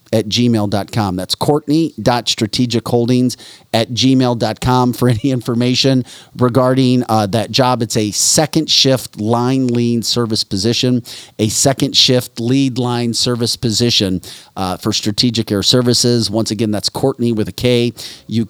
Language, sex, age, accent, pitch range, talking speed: English, male, 40-59, American, 105-125 Hz, 135 wpm